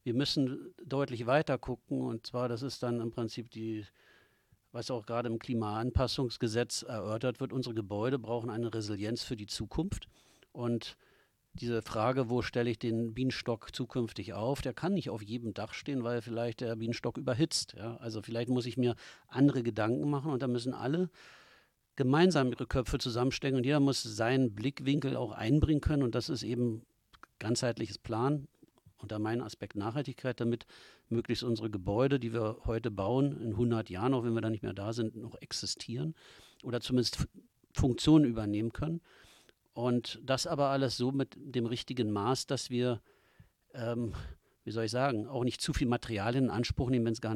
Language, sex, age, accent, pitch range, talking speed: German, male, 50-69, German, 115-130 Hz, 175 wpm